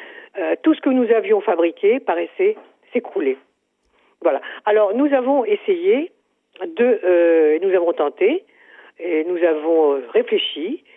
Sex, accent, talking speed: female, French, 125 wpm